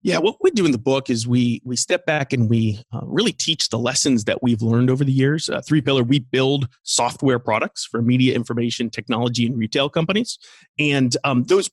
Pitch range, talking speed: 120-155 Hz, 215 wpm